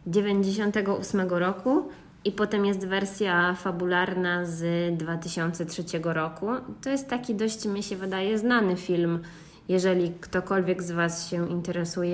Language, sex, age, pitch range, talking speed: Polish, female, 20-39, 175-205 Hz, 125 wpm